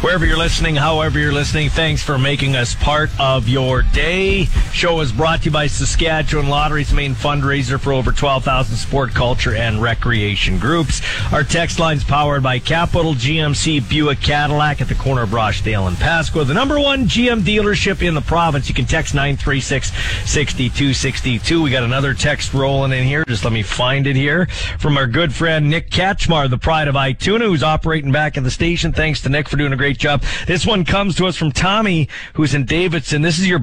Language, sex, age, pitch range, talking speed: English, male, 40-59, 125-160 Hz, 200 wpm